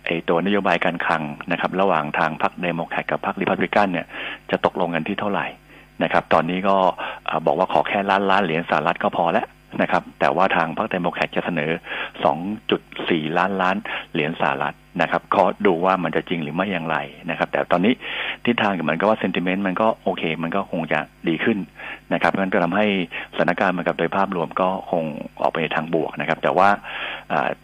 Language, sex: Thai, male